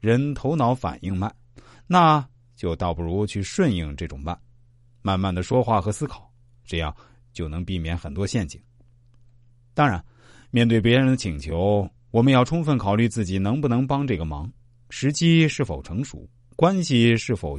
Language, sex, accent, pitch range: Chinese, male, native, 95-130 Hz